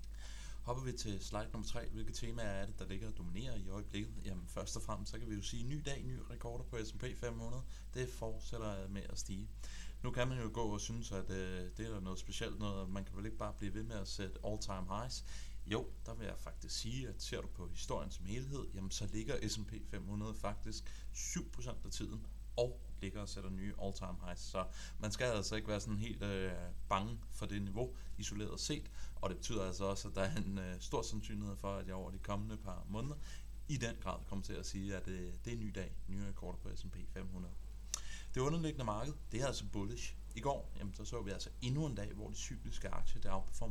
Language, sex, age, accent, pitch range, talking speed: Danish, male, 30-49, native, 95-115 Hz, 230 wpm